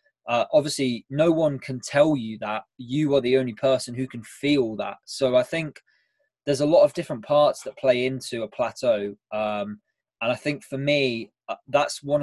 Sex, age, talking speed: male, 20-39, 195 wpm